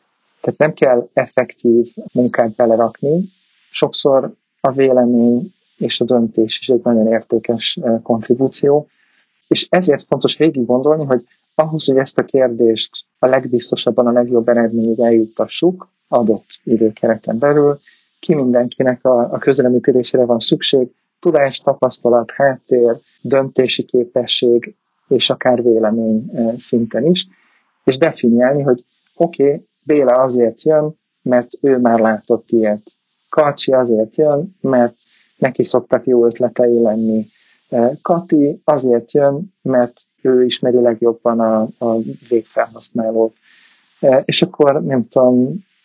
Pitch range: 115-140 Hz